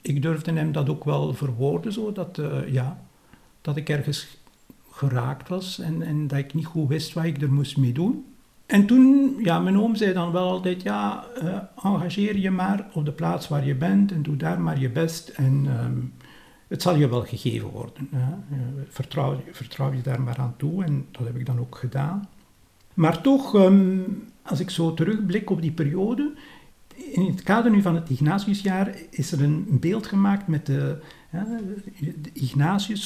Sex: male